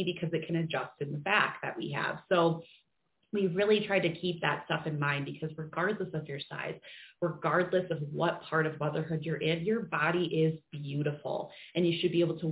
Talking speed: 205 wpm